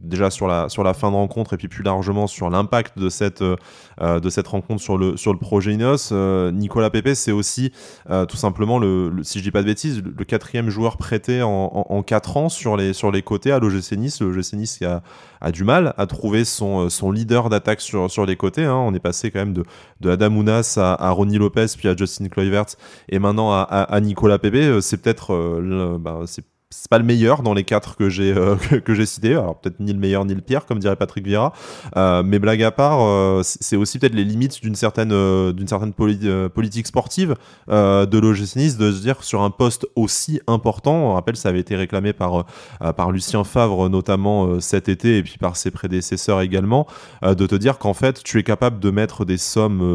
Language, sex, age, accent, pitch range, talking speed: French, male, 20-39, French, 95-110 Hz, 235 wpm